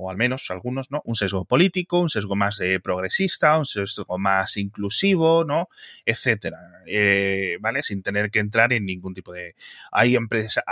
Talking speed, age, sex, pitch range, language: 175 wpm, 30-49, male, 100-130 Hz, Spanish